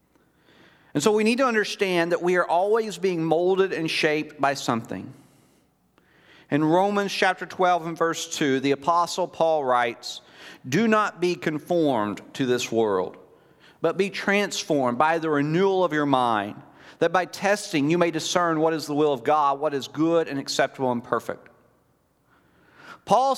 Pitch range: 150-200 Hz